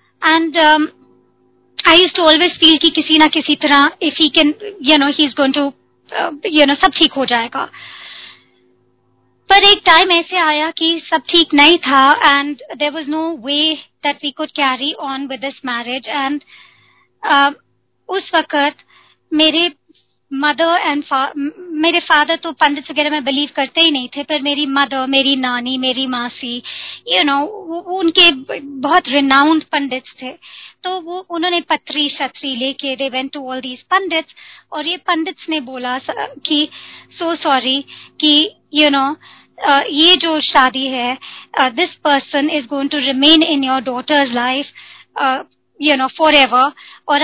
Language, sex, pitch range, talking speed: Hindi, male, 275-325 Hz, 155 wpm